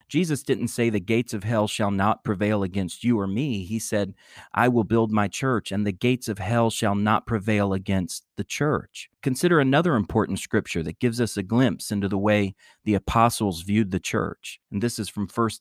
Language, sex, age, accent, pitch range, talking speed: English, male, 40-59, American, 100-125 Hz, 210 wpm